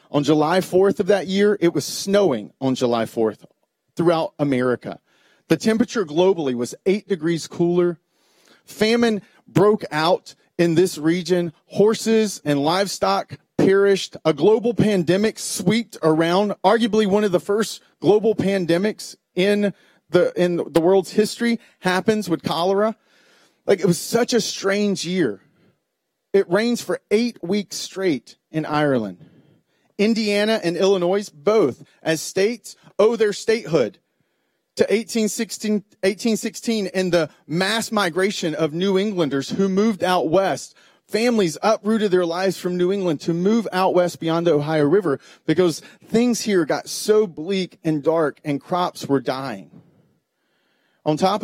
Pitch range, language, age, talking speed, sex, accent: 160-205 Hz, English, 40-59, 140 wpm, male, American